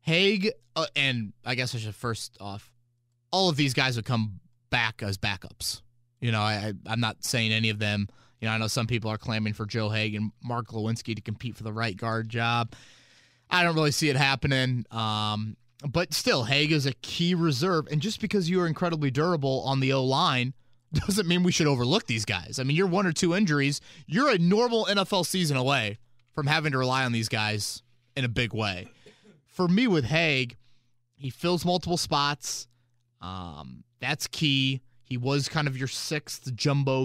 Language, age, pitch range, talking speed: English, 20-39, 120-145 Hz, 200 wpm